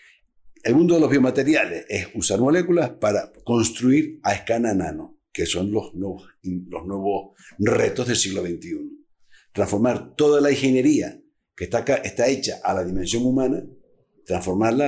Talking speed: 150 wpm